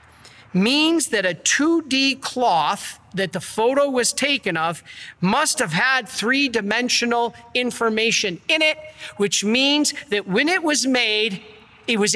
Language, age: English, 50-69